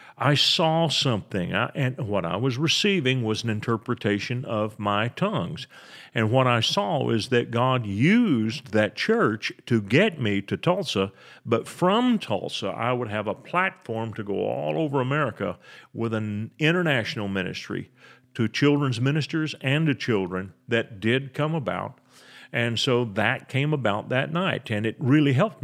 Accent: American